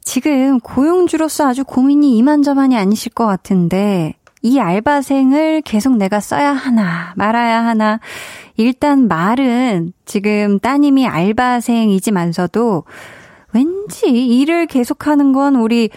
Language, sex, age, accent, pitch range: Korean, female, 20-39, native, 200-275 Hz